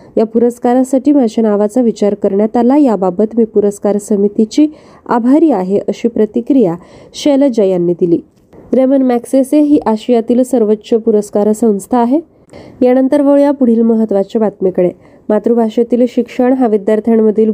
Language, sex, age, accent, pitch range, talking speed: Marathi, female, 20-39, native, 210-255 Hz, 115 wpm